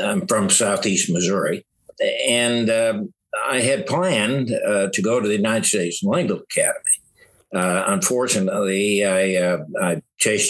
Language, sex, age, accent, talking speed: English, male, 60-79, American, 130 wpm